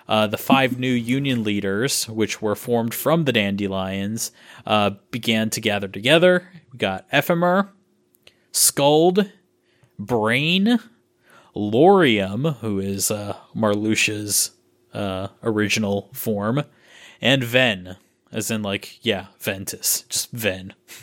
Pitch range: 110-145 Hz